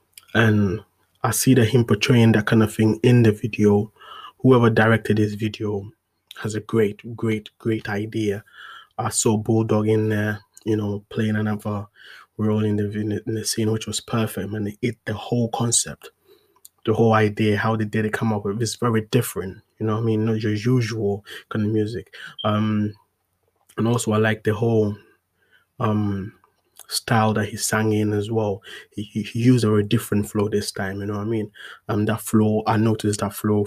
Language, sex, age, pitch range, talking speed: English, male, 20-39, 105-110 Hz, 190 wpm